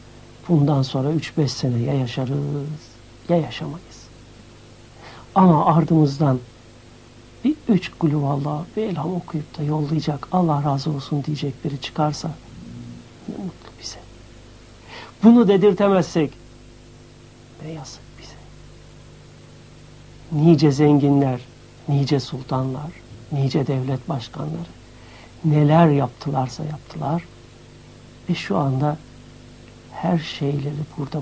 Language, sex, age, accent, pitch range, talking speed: Turkish, male, 60-79, native, 120-155 Hz, 90 wpm